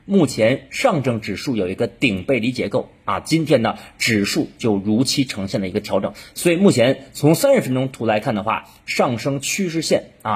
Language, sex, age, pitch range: Chinese, male, 30-49, 105-160 Hz